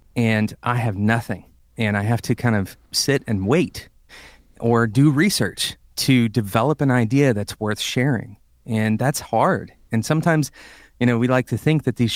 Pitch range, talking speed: 100-130 Hz, 180 wpm